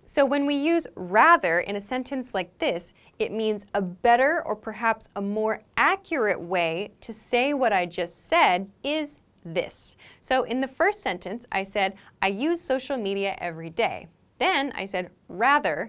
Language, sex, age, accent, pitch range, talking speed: English, female, 10-29, American, 190-270 Hz, 170 wpm